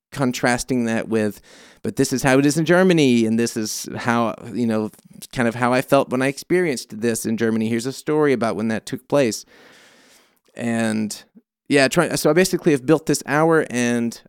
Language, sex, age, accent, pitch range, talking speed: English, male, 30-49, American, 115-145 Hz, 195 wpm